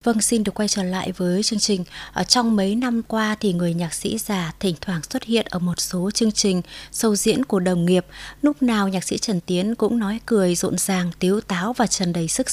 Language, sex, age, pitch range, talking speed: Vietnamese, female, 20-39, 180-230 Hz, 235 wpm